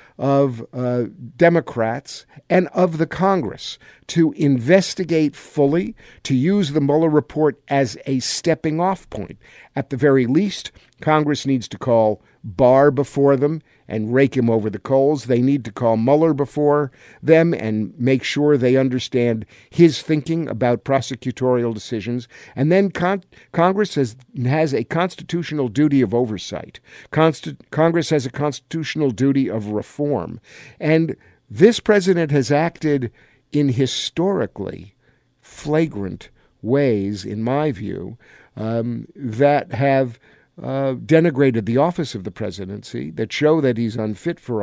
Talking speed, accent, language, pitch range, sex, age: 130 wpm, American, English, 120-160 Hz, male, 50-69